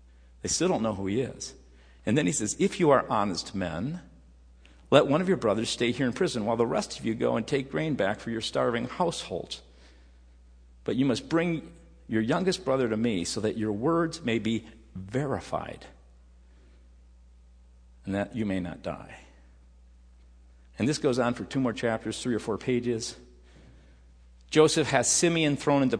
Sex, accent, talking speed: male, American, 180 wpm